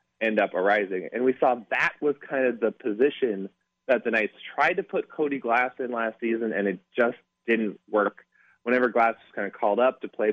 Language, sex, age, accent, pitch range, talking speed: English, male, 20-39, American, 100-125 Hz, 215 wpm